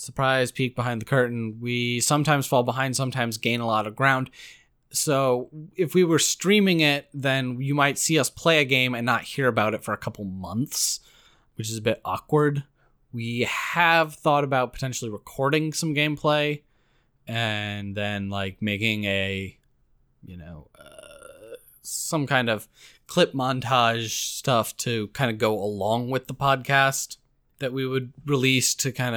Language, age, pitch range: English, 20-39, 110-140 Hz